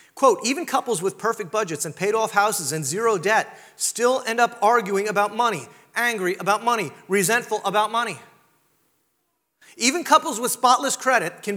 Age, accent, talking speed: 30-49, American, 160 wpm